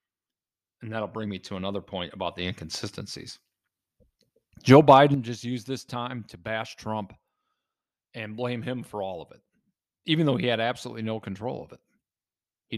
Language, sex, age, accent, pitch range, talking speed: English, male, 40-59, American, 105-135 Hz, 170 wpm